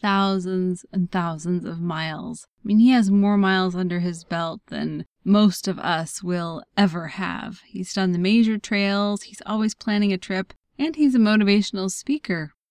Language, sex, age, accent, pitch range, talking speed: English, female, 20-39, American, 180-225 Hz, 170 wpm